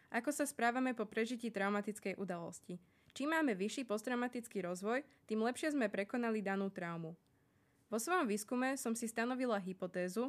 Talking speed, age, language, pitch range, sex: 145 wpm, 20-39, Slovak, 195-250 Hz, female